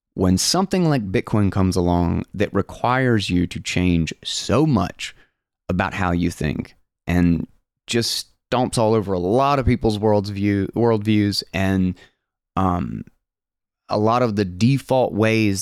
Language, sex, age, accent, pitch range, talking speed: English, male, 20-39, American, 95-120 Hz, 140 wpm